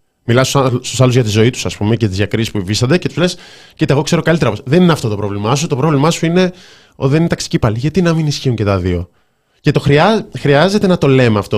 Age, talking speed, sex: 20-39, 265 wpm, male